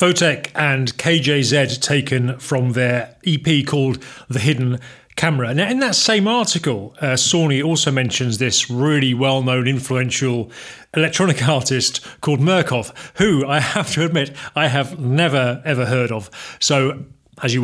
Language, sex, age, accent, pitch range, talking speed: English, male, 40-59, British, 125-160 Hz, 145 wpm